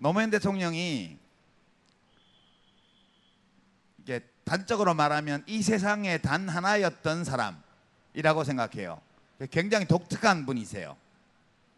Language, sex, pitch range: Korean, male, 150-200 Hz